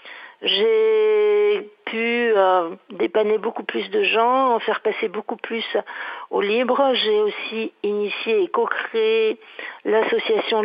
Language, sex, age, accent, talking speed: French, female, 50-69, French, 120 wpm